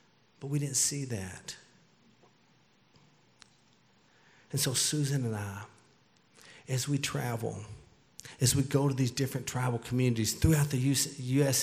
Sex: male